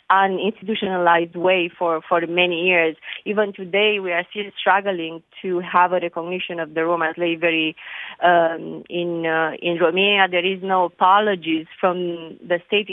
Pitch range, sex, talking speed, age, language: 170-190 Hz, female, 155 wpm, 20-39, English